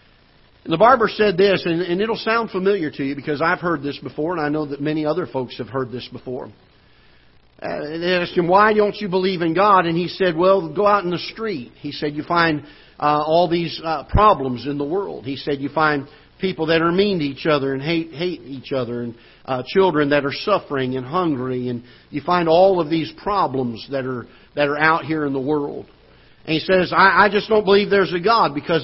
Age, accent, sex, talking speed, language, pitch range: 50-69, American, male, 230 wpm, English, 135-170 Hz